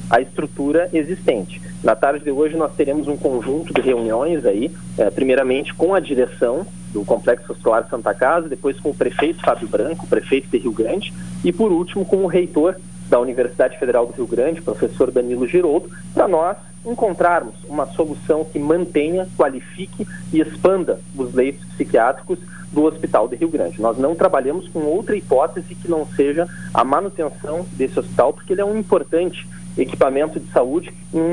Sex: male